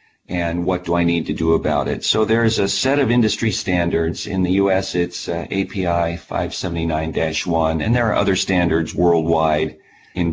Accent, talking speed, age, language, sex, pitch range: American, 175 wpm, 50-69, English, male, 85-105 Hz